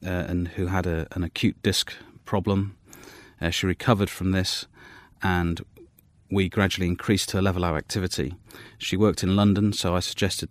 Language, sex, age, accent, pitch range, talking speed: English, male, 30-49, British, 90-100 Hz, 165 wpm